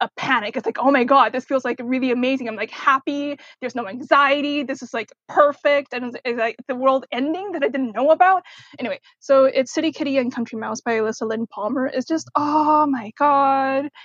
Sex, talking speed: female, 215 wpm